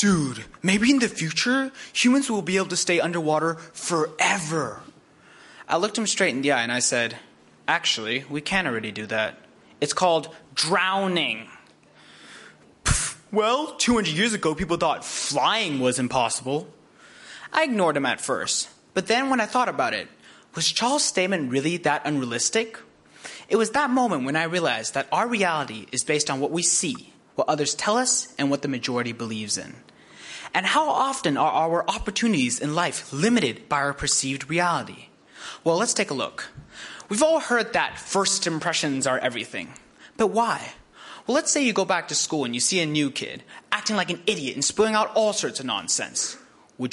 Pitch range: 140-215 Hz